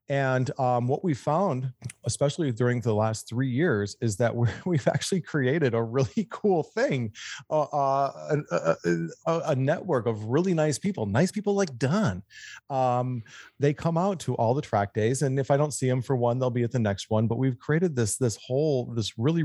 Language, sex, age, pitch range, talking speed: English, male, 30-49, 110-150 Hz, 205 wpm